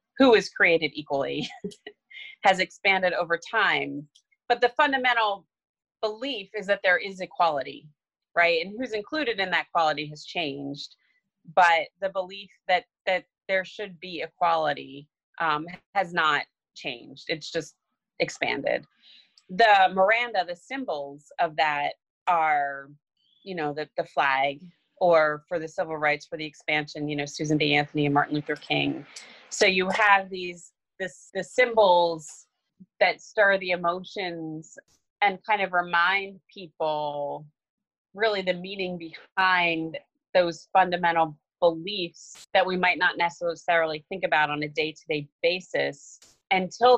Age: 30-49